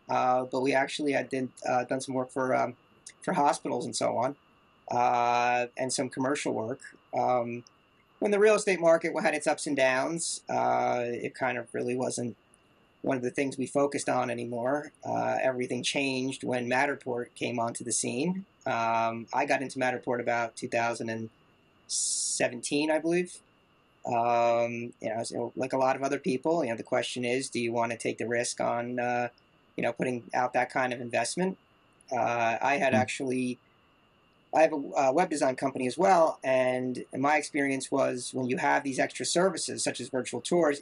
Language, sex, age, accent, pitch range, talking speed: English, male, 30-49, American, 120-145 Hz, 180 wpm